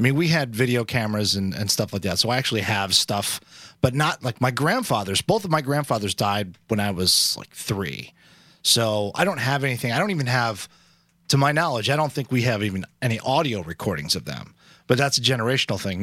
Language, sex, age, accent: English, male, 30-49, American